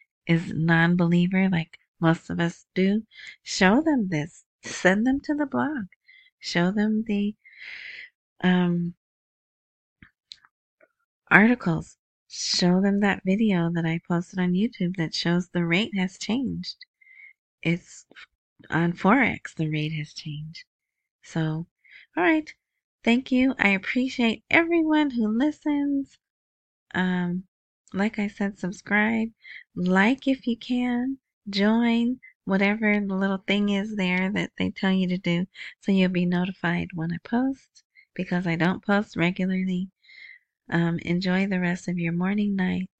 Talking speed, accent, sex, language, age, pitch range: 130 wpm, American, female, English, 30-49, 180-255 Hz